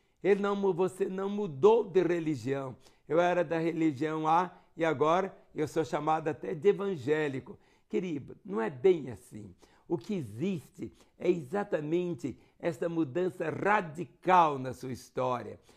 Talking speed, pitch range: 130 wpm, 145-185 Hz